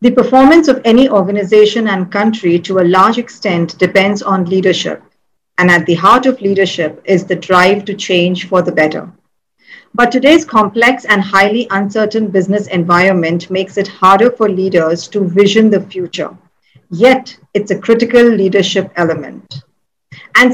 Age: 50-69